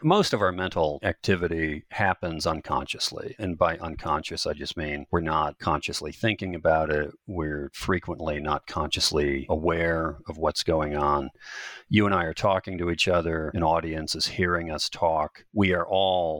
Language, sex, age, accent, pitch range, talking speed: English, male, 40-59, American, 80-95 Hz, 165 wpm